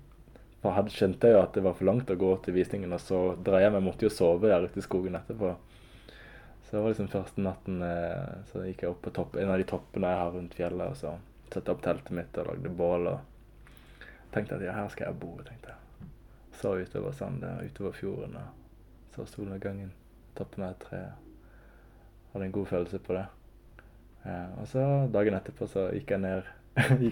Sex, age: male, 20-39